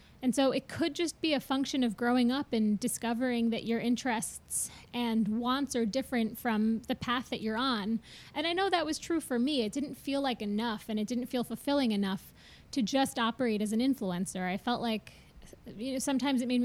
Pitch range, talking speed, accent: 220-265 Hz, 215 wpm, American